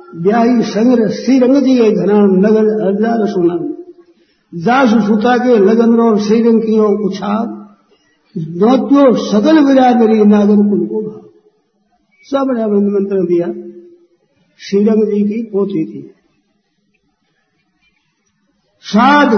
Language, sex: Hindi, male